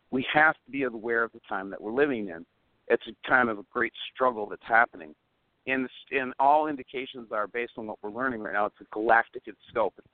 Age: 50-69